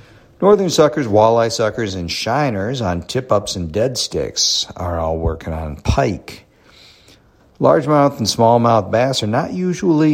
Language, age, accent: English, 50-69, American